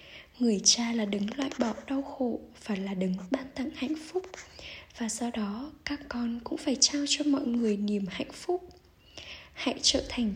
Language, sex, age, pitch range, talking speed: Vietnamese, female, 10-29, 215-275 Hz, 185 wpm